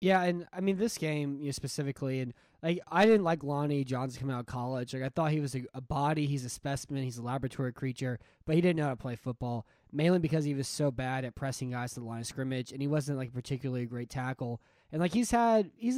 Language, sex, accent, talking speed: English, male, American, 265 wpm